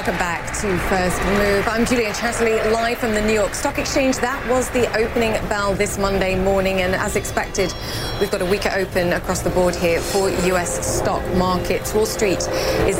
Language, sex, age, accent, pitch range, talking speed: English, female, 30-49, British, 180-210 Hz, 195 wpm